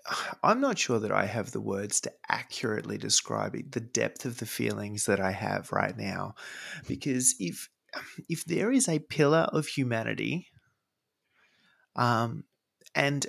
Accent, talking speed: Australian, 150 wpm